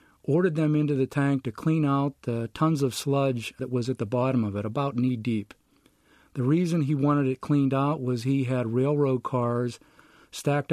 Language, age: English, 50-69